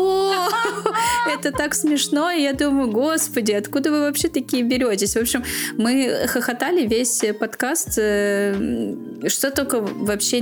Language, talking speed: Russian, 120 wpm